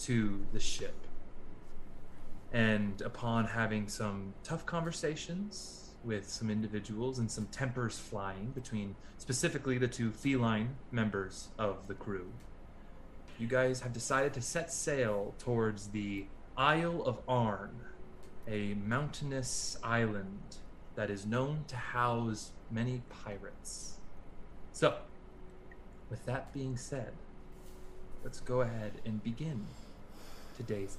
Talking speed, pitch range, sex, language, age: 110 wpm, 100-135 Hz, male, English, 20-39